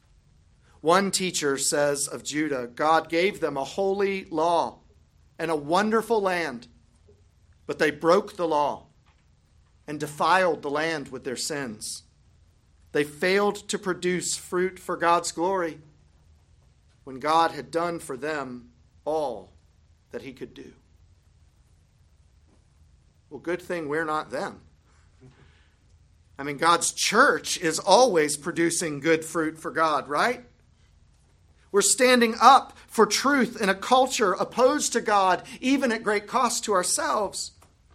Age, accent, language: 40-59, American, English